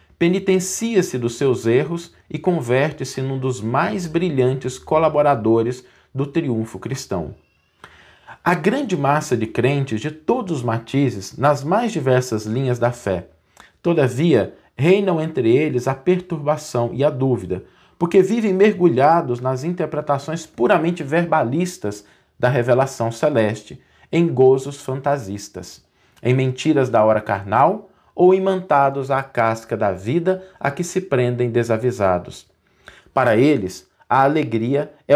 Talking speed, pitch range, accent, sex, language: 125 wpm, 120-170 Hz, Brazilian, male, Portuguese